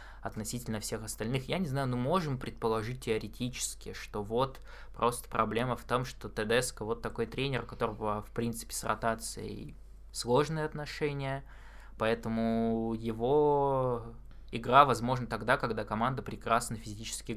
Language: Russian